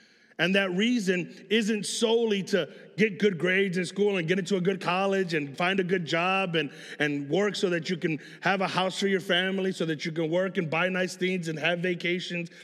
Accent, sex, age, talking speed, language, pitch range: American, male, 30-49, 225 wpm, English, 190-235 Hz